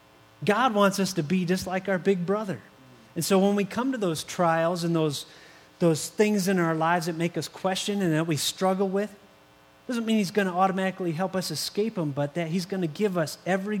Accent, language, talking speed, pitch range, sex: American, English, 225 wpm, 110-180 Hz, male